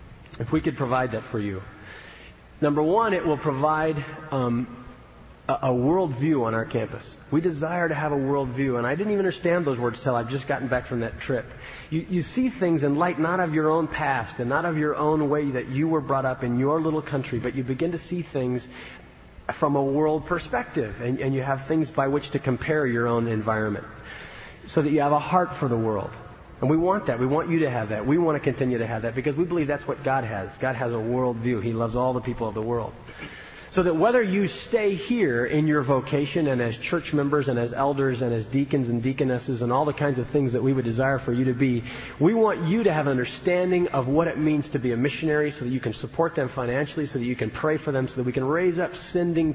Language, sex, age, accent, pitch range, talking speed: English, male, 30-49, American, 125-155 Hz, 250 wpm